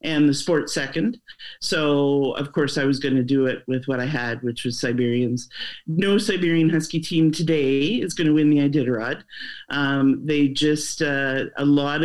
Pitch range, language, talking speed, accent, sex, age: 130-155 Hz, English, 185 wpm, American, male, 40-59